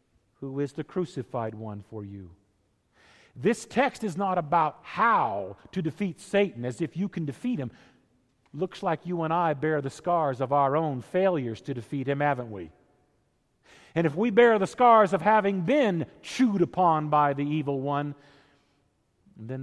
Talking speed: 170 wpm